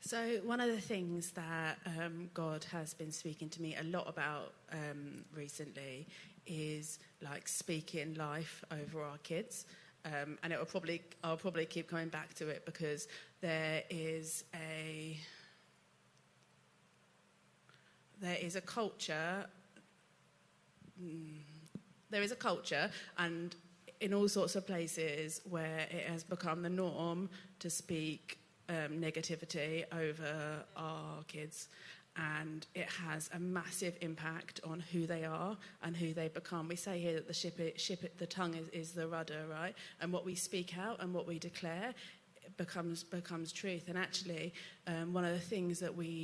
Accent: British